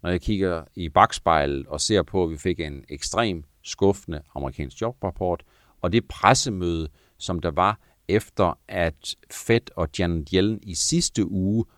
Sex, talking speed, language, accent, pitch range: male, 160 wpm, Danish, native, 80-105 Hz